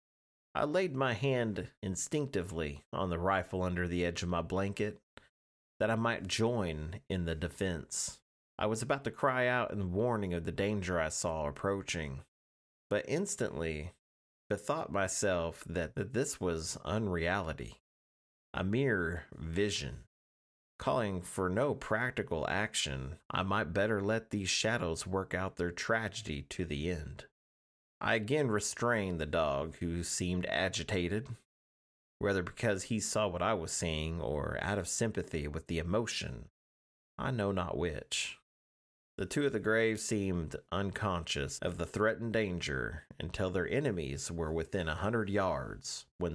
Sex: male